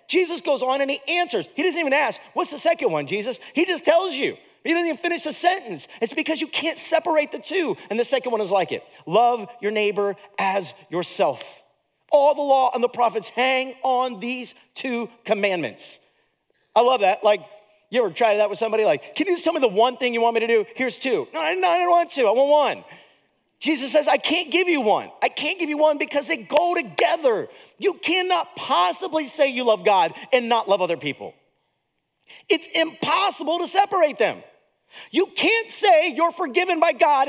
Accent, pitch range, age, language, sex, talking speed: American, 245-345 Hz, 40-59, English, male, 210 wpm